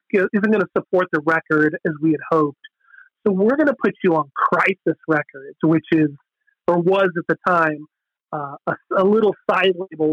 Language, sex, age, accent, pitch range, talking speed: English, male, 30-49, American, 160-185 Hz, 190 wpm